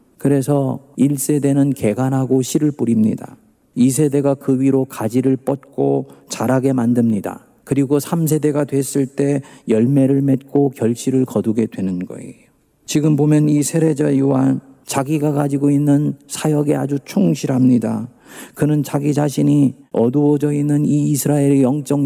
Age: 40-59